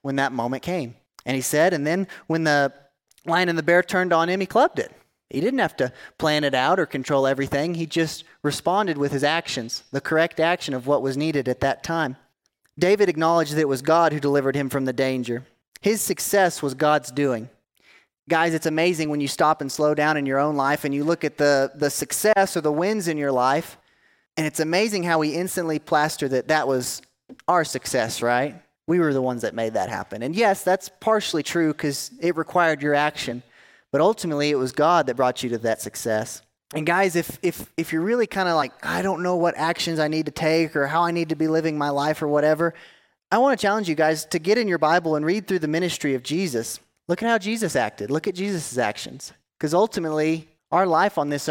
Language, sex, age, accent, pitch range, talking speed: English, male, 30-49, American, 140-170 Hz, 225 wpm